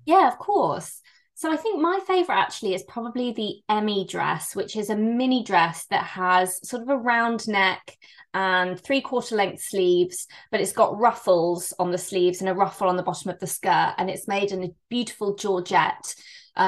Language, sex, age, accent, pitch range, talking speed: English, female, 20-39, British, 185-220 Hz, 195 wpm